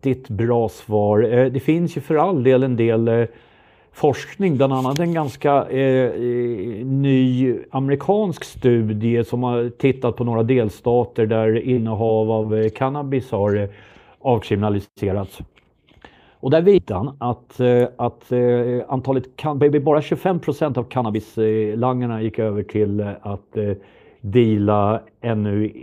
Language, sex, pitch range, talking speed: Swedish, male, 110-140 Hz, 105 wpm